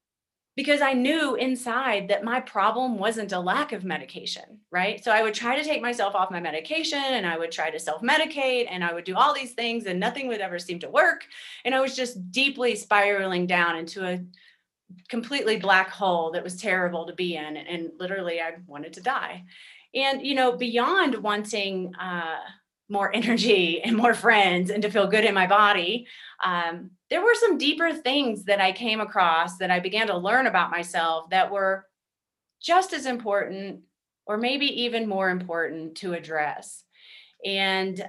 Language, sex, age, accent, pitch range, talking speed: English, female, 30-49, American, 180-240 Hz, 180 wpm